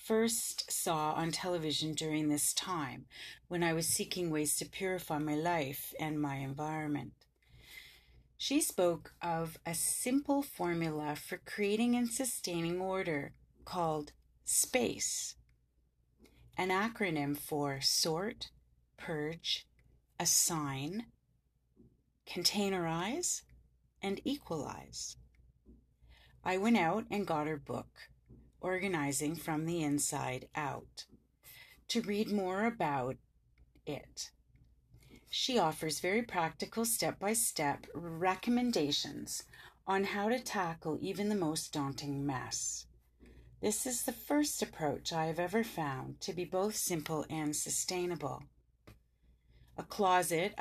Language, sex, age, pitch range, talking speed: English, female, 30-49, 140-195 Hz, 105 wpm